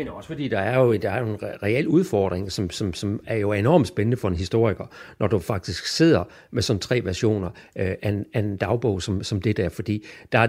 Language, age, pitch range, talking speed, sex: Danish, 60-79, 105-135 Hz, 225 wpm, male